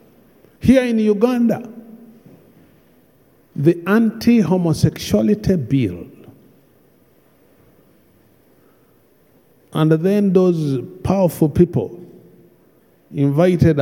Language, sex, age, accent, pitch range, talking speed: English, male, 50-69, Nigerian, 145-225 Hz, 50 wpm